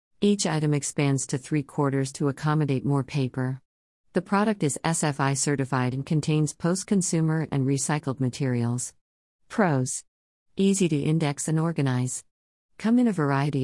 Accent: American